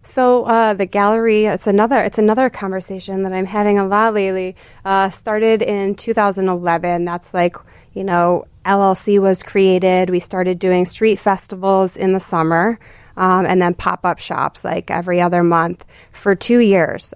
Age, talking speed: 20-39, 160 wpm